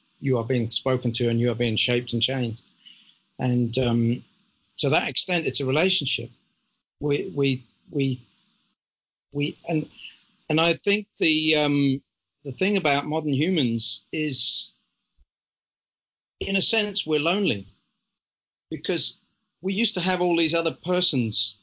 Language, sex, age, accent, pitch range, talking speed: English, male, 40-59, British, 125-160 Hz, 140 wpm